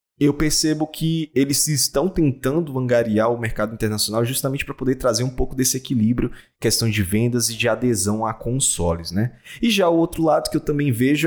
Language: Portuguese